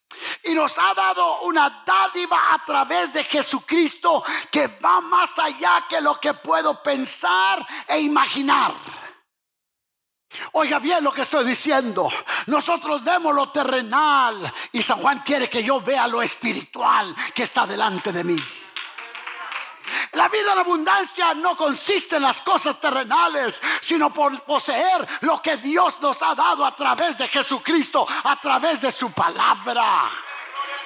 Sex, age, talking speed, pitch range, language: male, 50-69, 140 wpm, 265-330 Hz, English